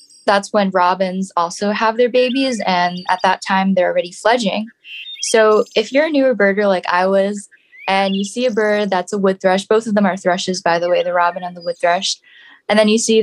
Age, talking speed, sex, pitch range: 10-29, 225 wpm, female, 190-220 Hz